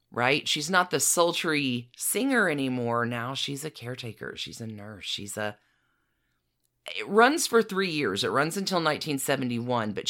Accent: American